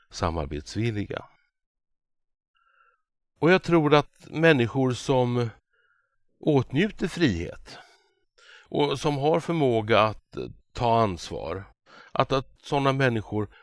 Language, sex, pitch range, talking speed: Swedish, male, 100-145 Hz, 90 wpm